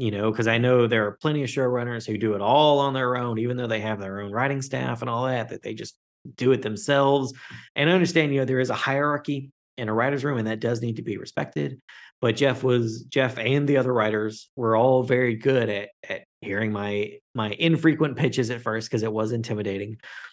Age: 30-49